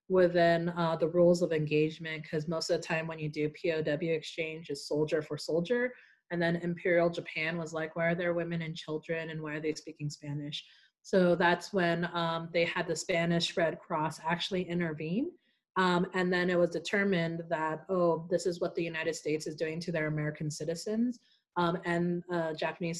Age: 30-49